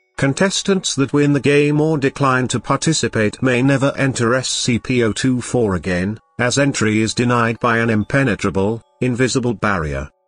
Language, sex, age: English, male, 50-69